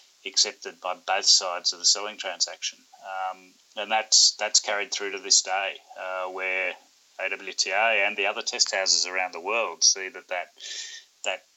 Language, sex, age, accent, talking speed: English, male, 30-49, Australian, 165 wpm